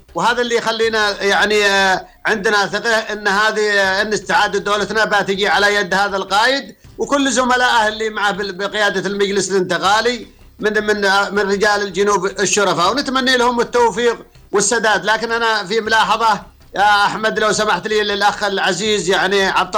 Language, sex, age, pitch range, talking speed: Arabic, male, 50-69, 200-225 Hz, 140 wpm